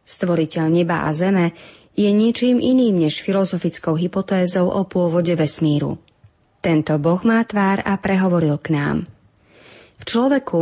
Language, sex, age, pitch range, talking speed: Slovak, female, 30-49, 165-215 Hz, 130 wpm